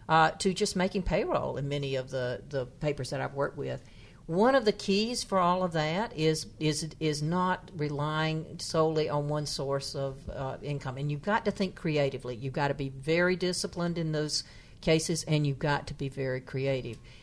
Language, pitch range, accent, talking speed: English, 140-165 Hz, American, 200 wpm